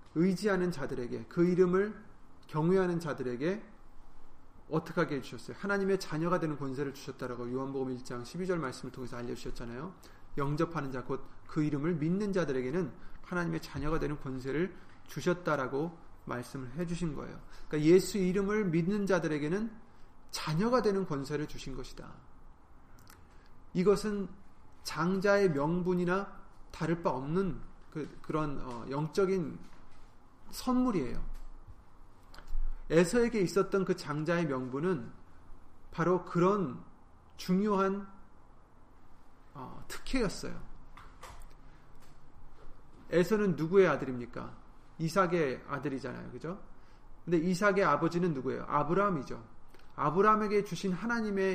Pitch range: 130-190 Hz